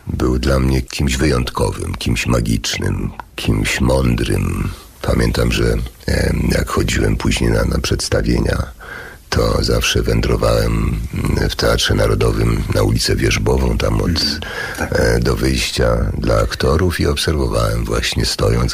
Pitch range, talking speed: 65-85 Hz, 110 wpm